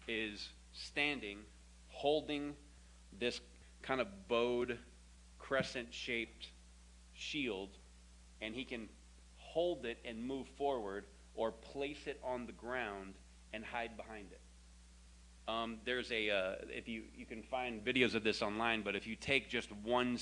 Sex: male